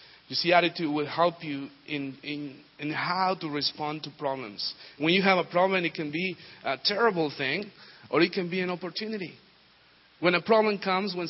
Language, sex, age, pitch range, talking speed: English, male, 40-59, 145-195 Hz, 190 wpm